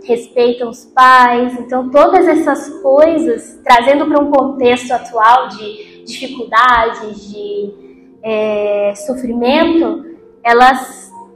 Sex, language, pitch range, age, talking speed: female, Portuguese, 245-295 Hz, 10-29, 95 wpm